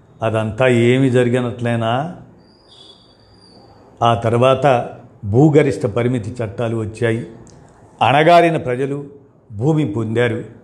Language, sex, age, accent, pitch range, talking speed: Telugu, male, 50-69, native, 115-135 Hz, 75 wpm